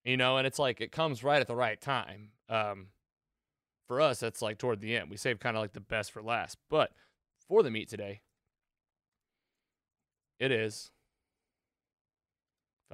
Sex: male